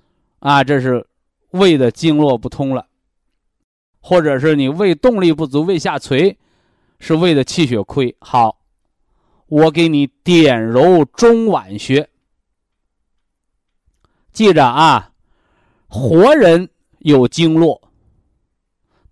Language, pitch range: Chinese, 135-215 Hz